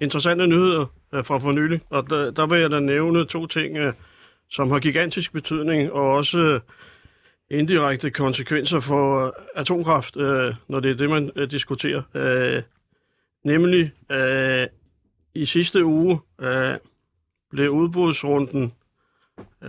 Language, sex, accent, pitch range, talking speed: Danish, male, native, 135-160 Hz, 110 wpm